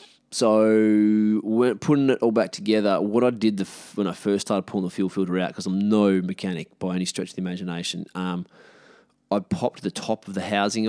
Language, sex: English, male